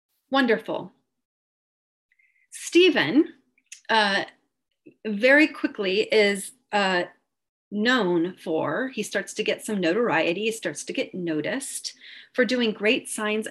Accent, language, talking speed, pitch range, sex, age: American, English, 105 wpm, 180-255 Hz, female, 30-49